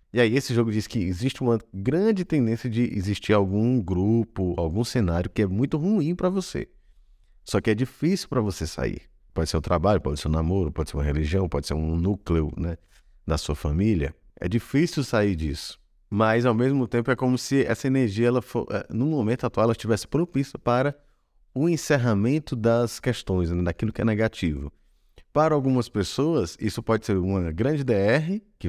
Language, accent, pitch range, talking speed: Portuguese, Brazilian, 90-130 Hz, 180 wpm